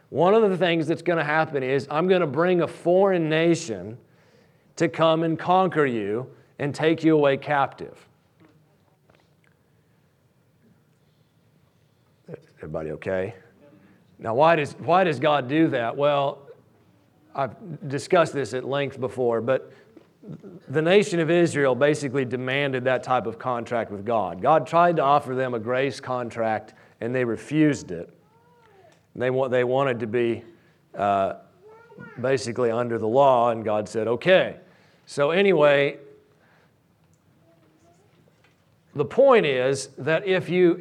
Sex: male